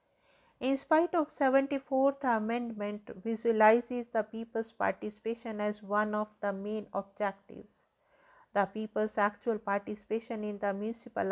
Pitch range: 205-235 Hz